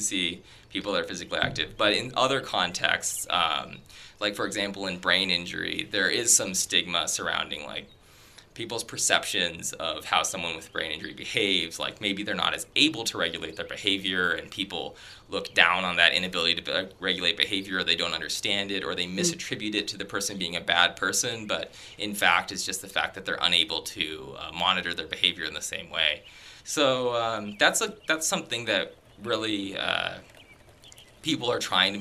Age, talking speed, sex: 20-39, 185 wpm, male